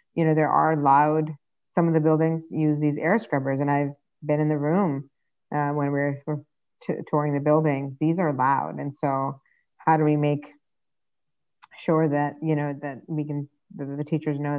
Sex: female